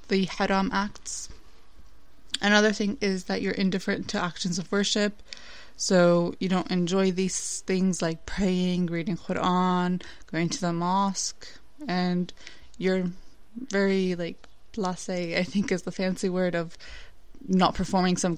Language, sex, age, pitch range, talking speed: English, female, 20-39, 175-195 Hz, 135 wpm